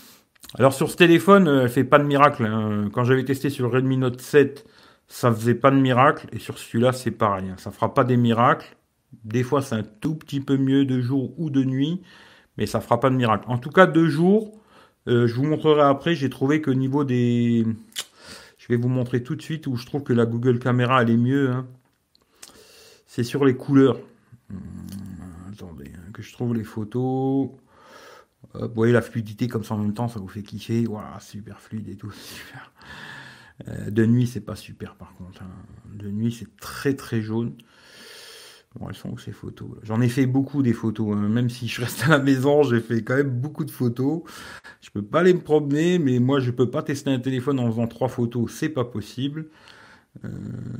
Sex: male